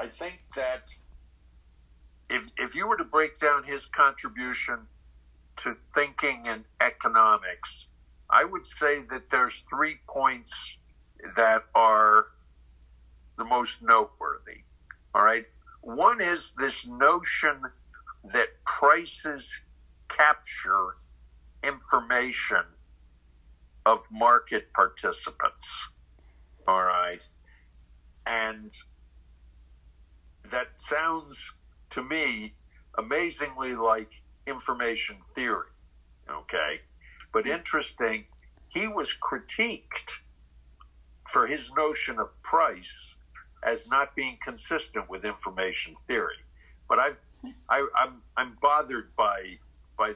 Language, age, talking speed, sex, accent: English, 60-79, 95 wpm, male, American